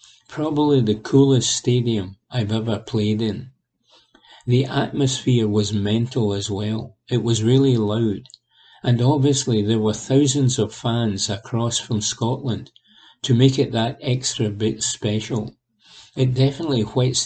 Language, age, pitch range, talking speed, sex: English, 50-69, 110-130 Hz, 130 wpm, male